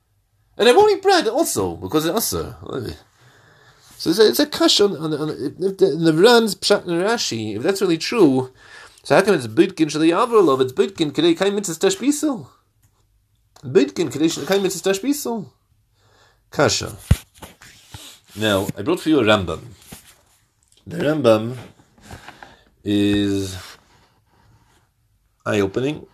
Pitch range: 105-165 Hz